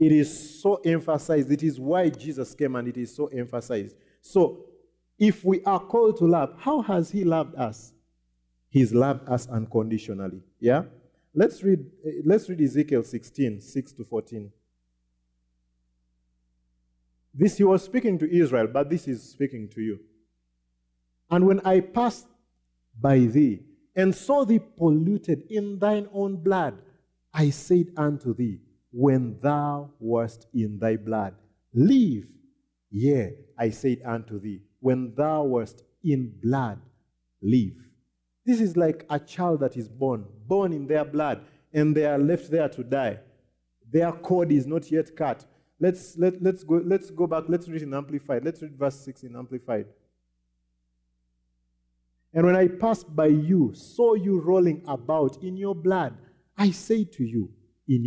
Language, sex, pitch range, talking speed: English, male, 110-175 Hz, 155 wpm